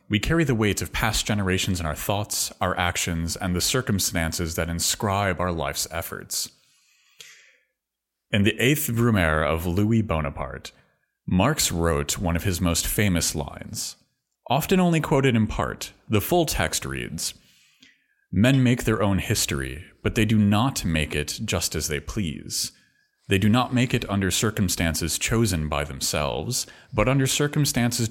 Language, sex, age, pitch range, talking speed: English, male, 30-49, 80-115 Hz, 155 wpm